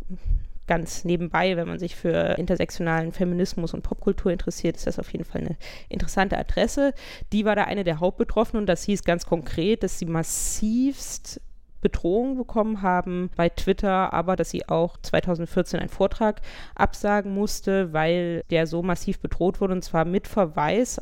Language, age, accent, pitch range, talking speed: German, 20-39, German, 170-200 Hz, 165 wpm